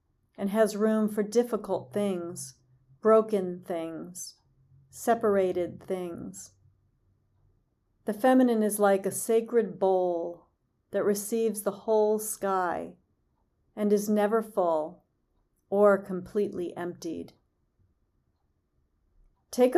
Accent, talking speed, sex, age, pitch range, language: American, 90 wpm, female, 40-59, 175-215 Hz, English